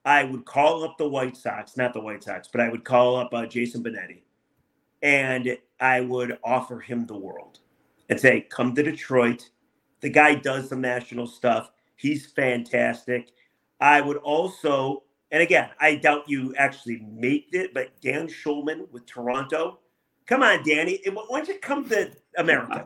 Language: English